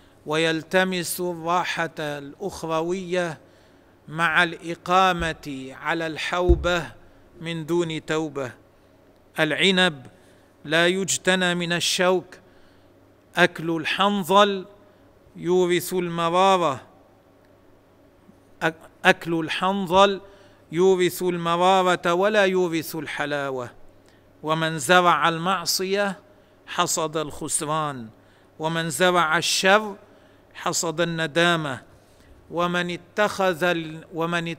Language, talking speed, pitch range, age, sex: Arabic, 70 wpm, 145-180 Hz, 50-69, male